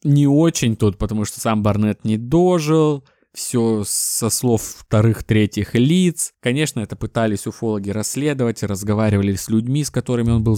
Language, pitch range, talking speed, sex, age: Russian, 105-130 Hz, 145 wpm, male, 20-39